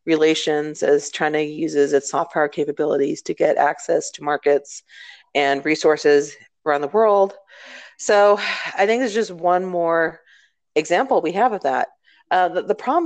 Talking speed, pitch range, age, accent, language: 150 wpm, 145-180 Hz, 40-59, American, English